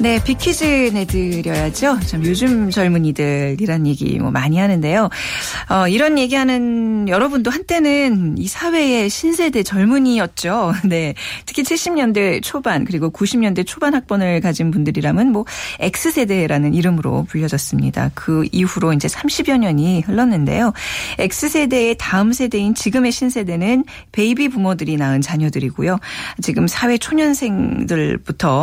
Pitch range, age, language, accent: 165-250 Hz, 40-59, Korean, native